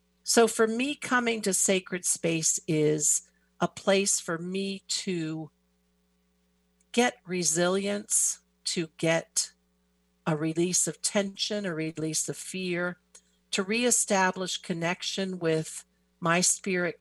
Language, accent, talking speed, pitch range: English, American, 110 wpm, 150-195 Hz